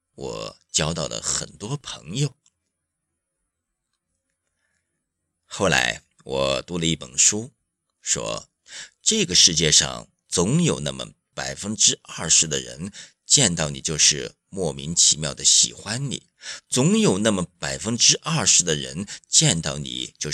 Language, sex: Chinese, male